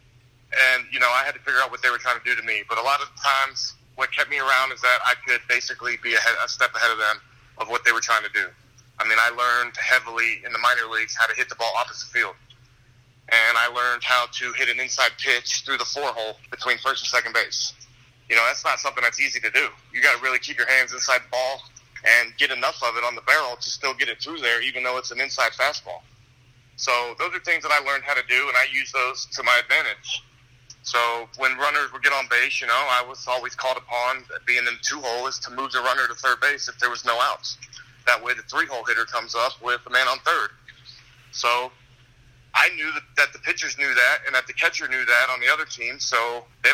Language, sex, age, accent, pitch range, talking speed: English, male, 30-49, American, 120-130 Hz, 250 wpm